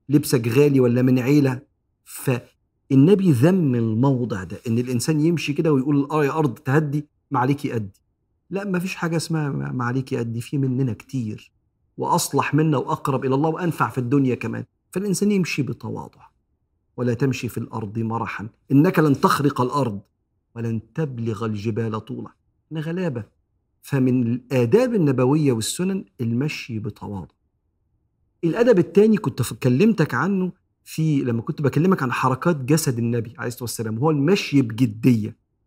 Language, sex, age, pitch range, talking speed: Arabic, male, 50-69, 115-150 Hz, 140 wpm